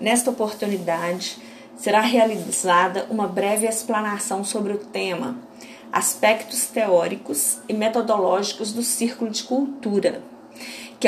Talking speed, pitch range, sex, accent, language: 105 wpm, 205-265 Hz, female, Brazilian, Portuguese